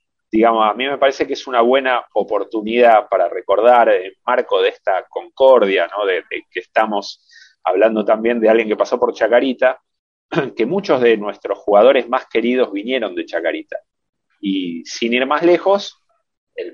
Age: 30-49